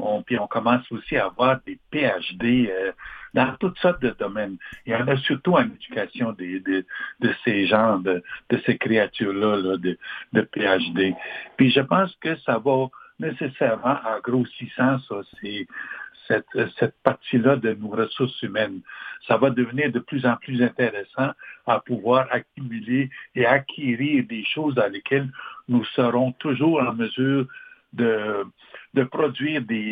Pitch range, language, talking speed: 115-150 Hz, French, 145 wpm